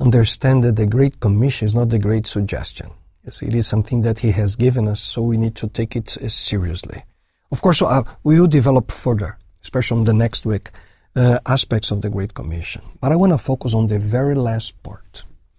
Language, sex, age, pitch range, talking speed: English, male, 50-69, 100-130 Hz, 200 wpm